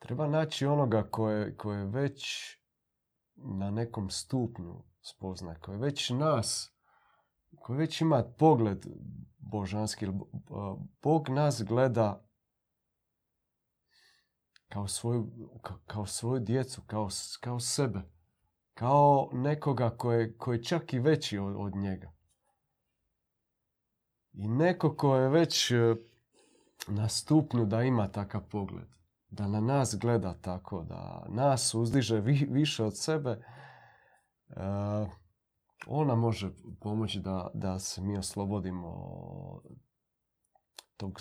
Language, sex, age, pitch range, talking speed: Croatian, male, 40-59, 100-125 Hz, 100 wpm